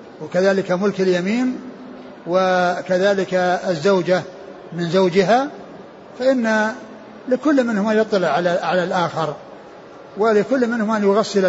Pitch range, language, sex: 180-220 Hz, Arabic, male